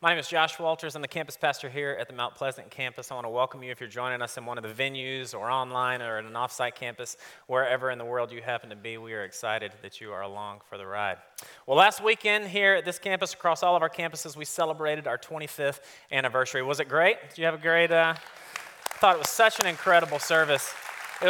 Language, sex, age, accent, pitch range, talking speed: English, male, 30-49, American, 125-160 Hz, 250 wpm